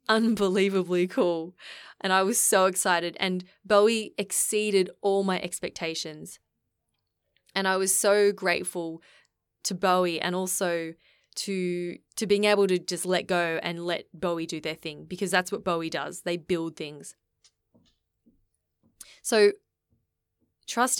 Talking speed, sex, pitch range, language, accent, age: 130 wpm, female, 180-270 Hz, English, Australian, 20-39